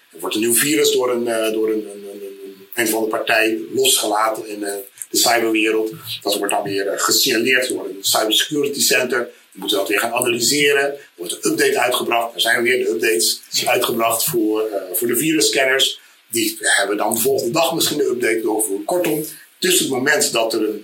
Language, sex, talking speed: Dutch, male, 180 wpm